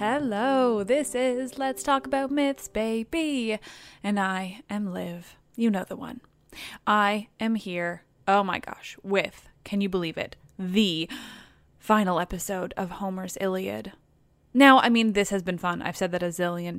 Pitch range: 180-225 Hz